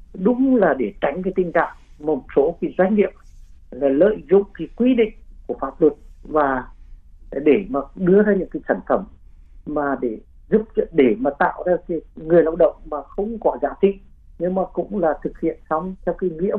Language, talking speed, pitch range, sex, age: Vietnamese, 205 wpm, 140-190 Hz, male, 50-69